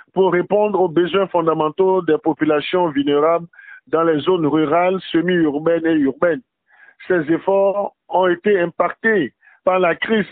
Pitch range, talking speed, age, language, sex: 165-205 Hz, 135 wpm, 50-69, French, male